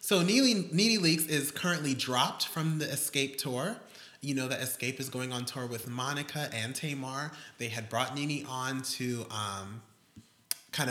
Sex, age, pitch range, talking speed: male, 20-39, 115-150 Hz, 170 wpm